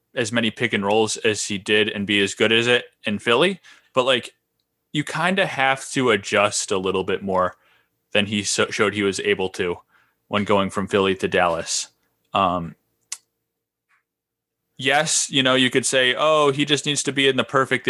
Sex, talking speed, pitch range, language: male, 190 wpm, 105-125 Hz, English